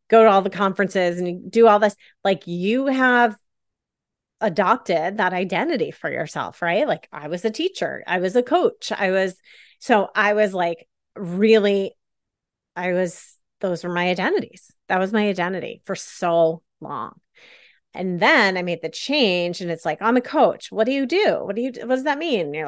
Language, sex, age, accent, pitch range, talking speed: English, female, 30-49, American, 185-255 Hz, 190 wpm